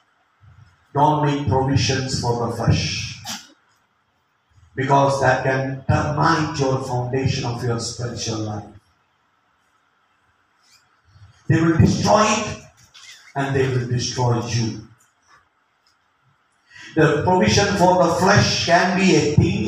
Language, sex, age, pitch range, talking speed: English, male, 50-69, 115-160 Hz, 100 wpm